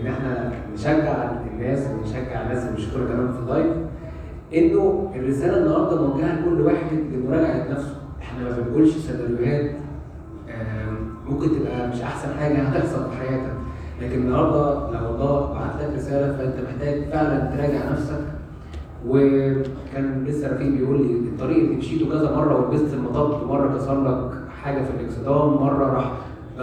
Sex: male